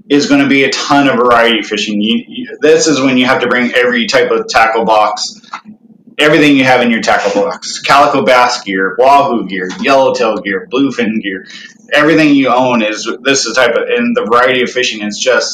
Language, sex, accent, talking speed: English, male, American, 210 wpm